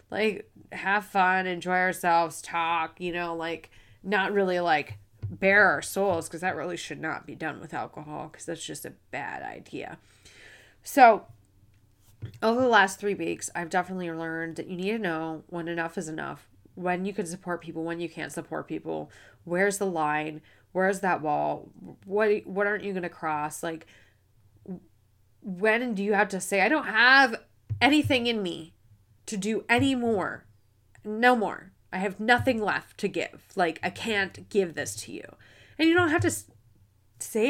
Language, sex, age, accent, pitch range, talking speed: English, female, 20-39, American, 150-215 Hz, 175 wpm